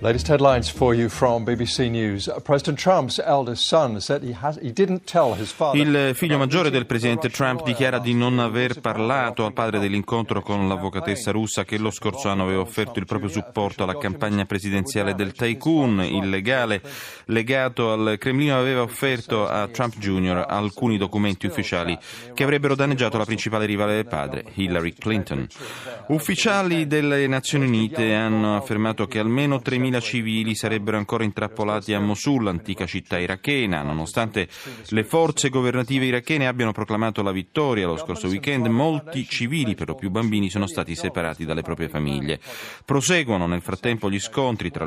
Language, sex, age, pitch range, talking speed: Italian, male, 30-49, 100-125 Hz, 135 wpm